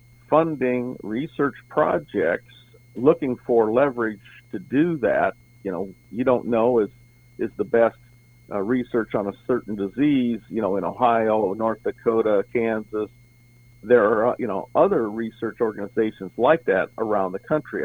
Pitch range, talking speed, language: 110-125 Hz, 145 wpm, English